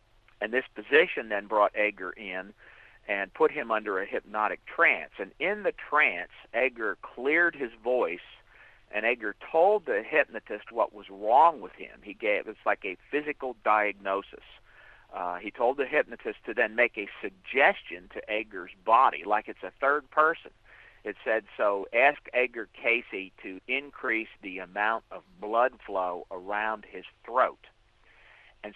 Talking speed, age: 155 wpm, 50-69